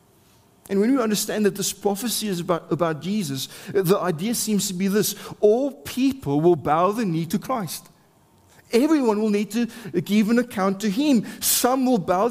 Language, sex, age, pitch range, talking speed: English, male, 30-49, 175-210 Hz, 180 wpm